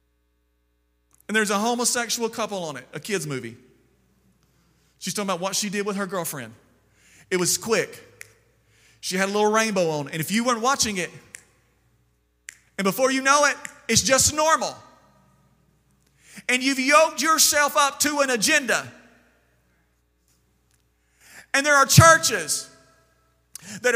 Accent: American